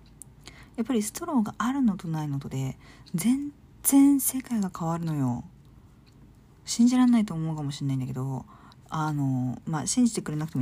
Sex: female